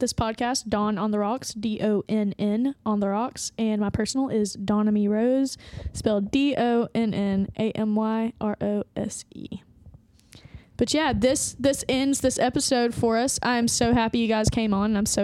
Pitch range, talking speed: 210-245 Hz, 145 wpm